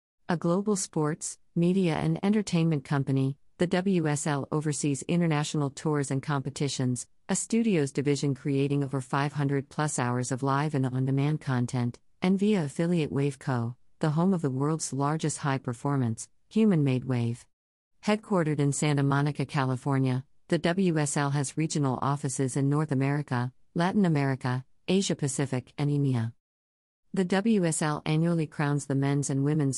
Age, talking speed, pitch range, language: 50-69, 130 wpm, 130-160 Hz, English